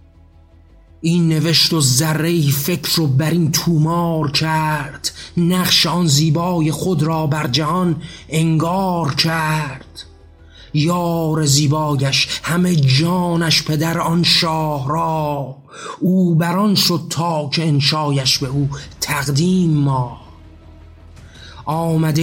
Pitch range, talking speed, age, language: 145-170 Hz, 105 wpm, 30-49, Persian